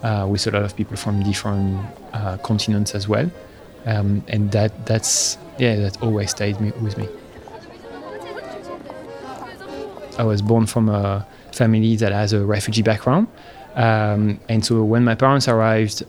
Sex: male